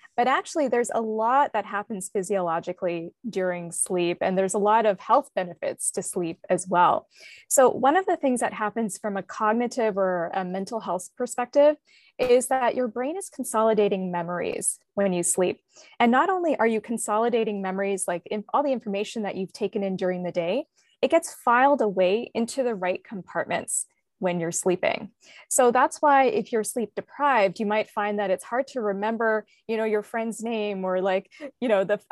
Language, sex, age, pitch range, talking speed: English, female, 20-39, 190-250 Hz, 185 wpm